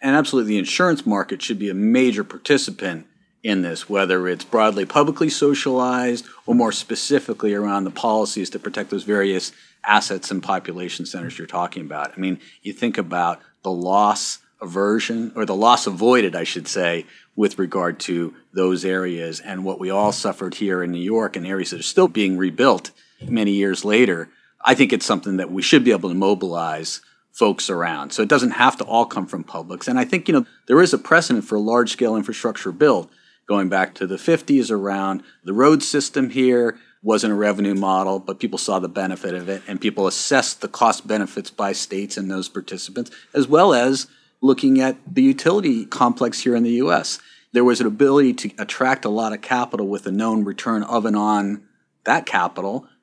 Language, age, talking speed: English, 40-59, 195 wpm